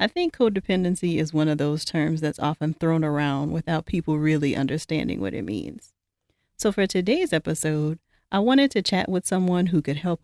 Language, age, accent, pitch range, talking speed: English, 40-59, American, 155-200 Hz, 190 wpm